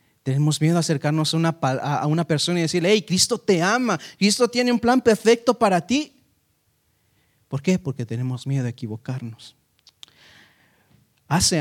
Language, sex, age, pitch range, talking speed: Italian, male, 30-49, 135-195 Hz, 155 wpm